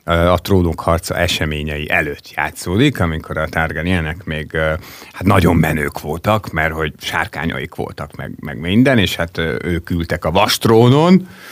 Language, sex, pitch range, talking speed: Hungarian, male, 85-110 Hz, 140 wpm